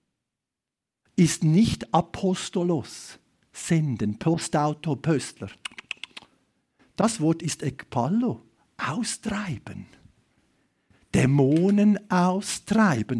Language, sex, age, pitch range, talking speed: German, male, 50-69, 175-245 Hz, 60 wpm